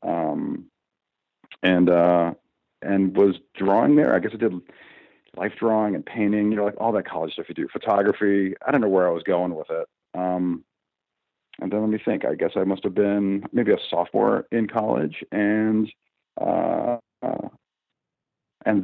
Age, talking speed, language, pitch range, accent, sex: 40-59, 160 wpm, English, 95-115 Hz, American, male